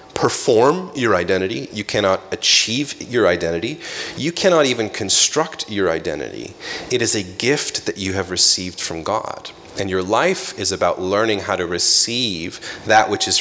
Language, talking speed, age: English, 160 wpm, 30-49